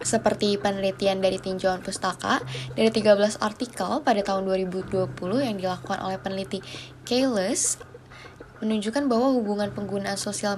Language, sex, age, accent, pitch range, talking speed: Indonesian, female, 10-29, native, 185-225 Hz, 120 wpm